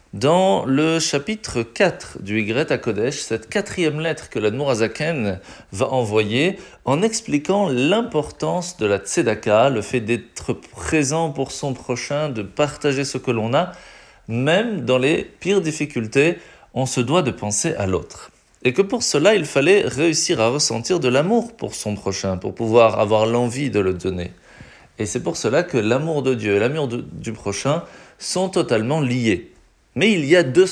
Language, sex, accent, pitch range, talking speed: French, male, French, 110-180 Hz, 175 wpm